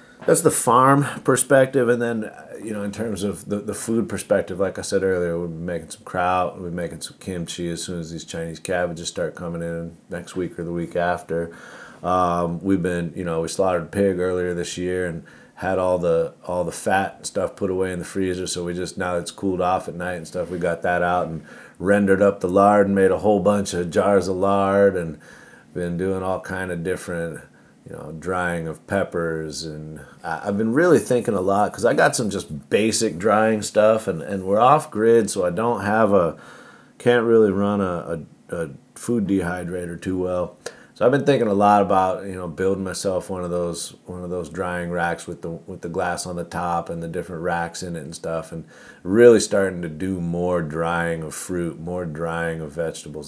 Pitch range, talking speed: 85-100 Hz, 215 wpm